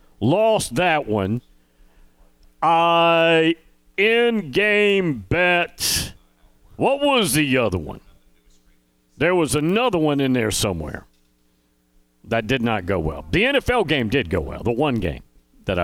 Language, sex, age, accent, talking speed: English, male, 50-69, American, 130 wpm